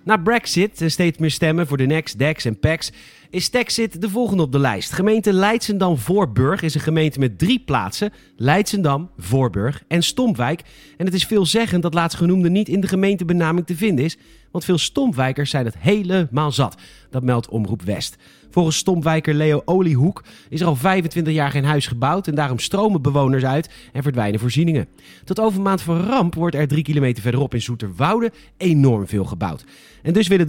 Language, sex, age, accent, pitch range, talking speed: Dutch, male, 40-59, Dutch, 130-185 Hz, 185 wpm